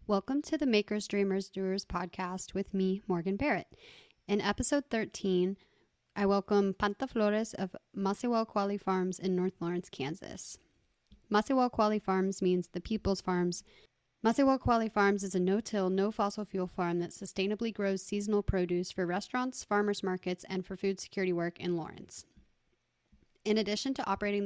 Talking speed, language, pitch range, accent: 150 wpm, English, 185-210 Hz, American